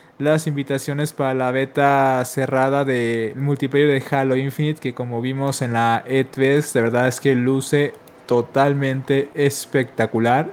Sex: male